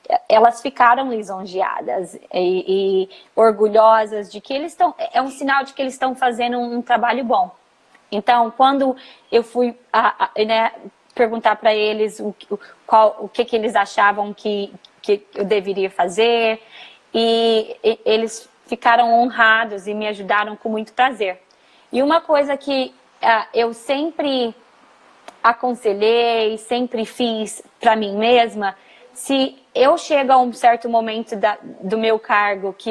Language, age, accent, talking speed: Portuguese, 20-39, Brazilian, 145 wpm